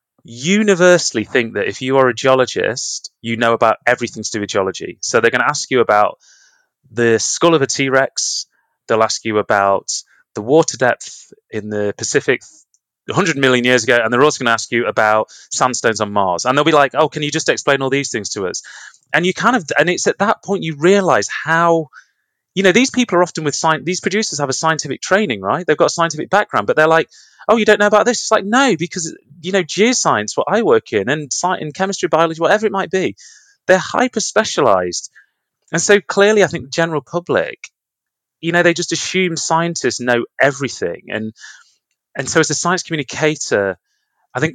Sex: male